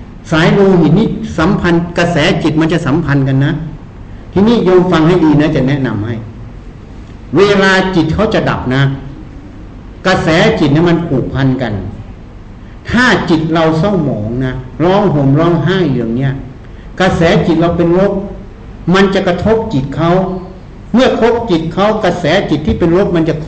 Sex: male